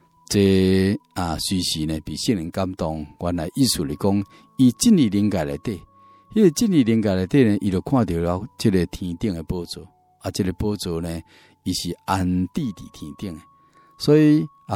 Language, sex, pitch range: Chinese, male, 85-115 Hz